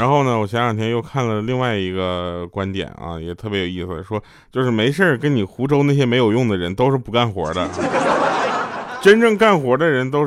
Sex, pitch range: male, 100-150 Hz